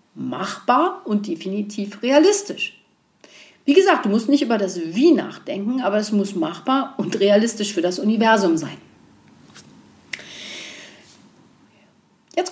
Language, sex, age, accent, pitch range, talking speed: German, female, 50-69, German, 195-290 Hz, 115 wpm